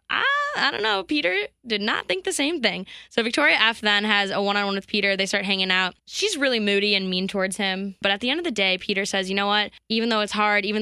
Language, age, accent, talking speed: English, 10-29, American, 275 wpm